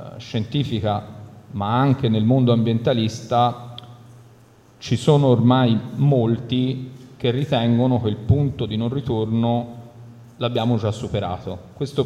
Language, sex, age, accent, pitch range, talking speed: Italian, male, 40-59, native, 110-130 Hz, 110 wpm